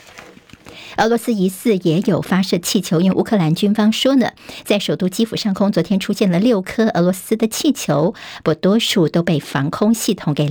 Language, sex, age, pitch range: Chinese, male, 50-69, 170-225 Hz